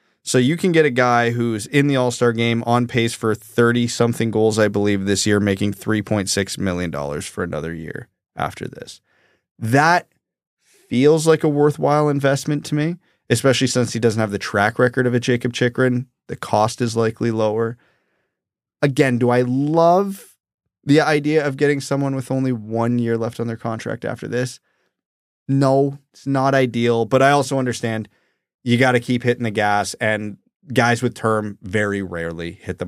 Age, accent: 20-39, American